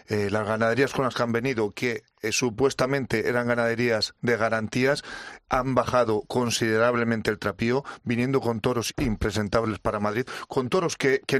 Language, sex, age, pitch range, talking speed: Spanish, male, 40-59, 115-135 Hz, 160 wpm